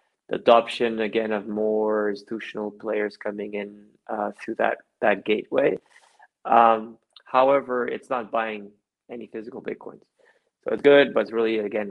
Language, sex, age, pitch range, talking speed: Italian, male, 20-39, 105-125 Hz, 140 wpm